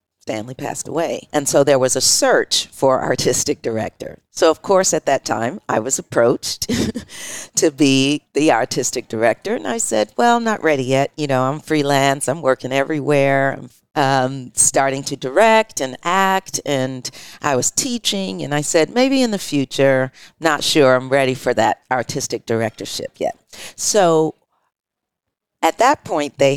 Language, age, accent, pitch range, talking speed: English, 50-69, American, 130-165 Hz, 165 wpm